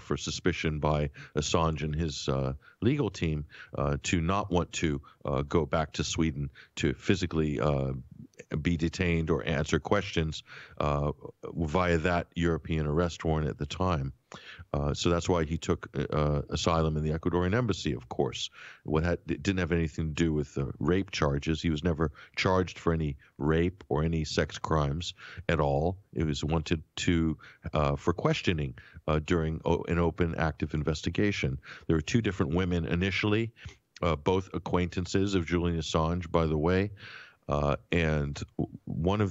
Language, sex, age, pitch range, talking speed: English, male, 50-69, 80-90 Hz, 165 wpm